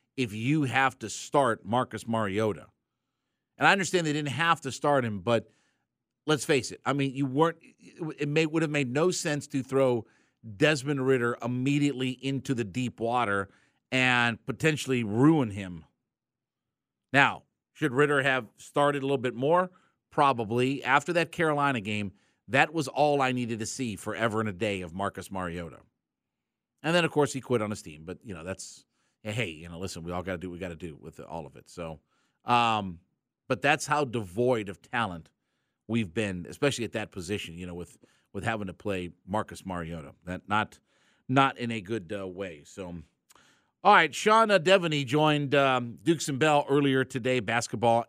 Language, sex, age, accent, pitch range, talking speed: English, male, 50-69, American, 105-150 Hz, 185 wpm